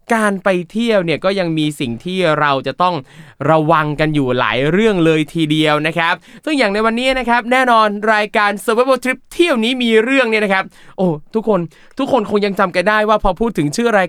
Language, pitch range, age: Thai, 170-220 Hz, 20-39